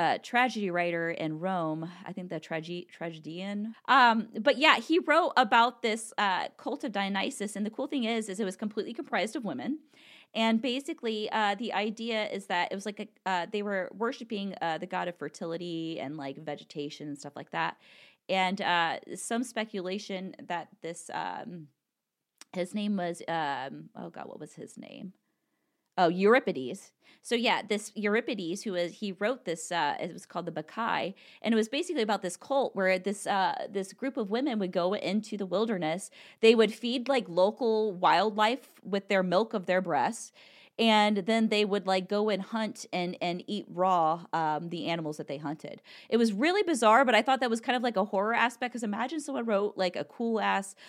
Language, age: English, 20-39